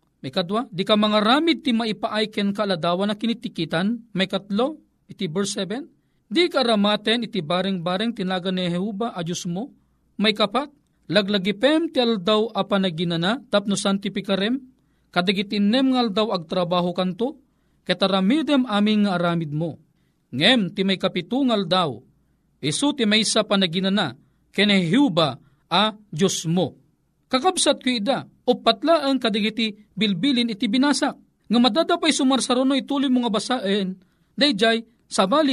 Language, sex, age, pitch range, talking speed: Filipino, male, 40-59, 195-265 Hz, 140 wpm